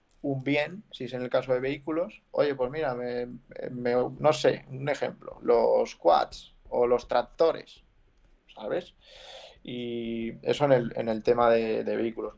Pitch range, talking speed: 120-145 Hz, 165 wpm